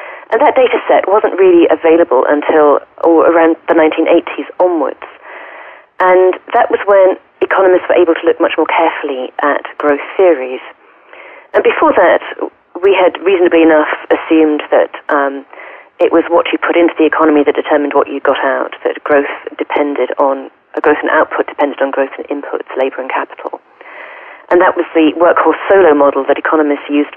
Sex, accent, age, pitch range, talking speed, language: female, British, 30-49, 150-190 Hz, 175 wpm, English